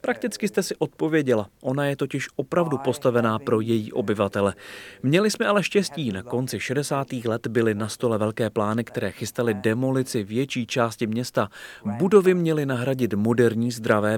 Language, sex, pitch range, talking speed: Czech, male, 115-140 Hz, 150 wpm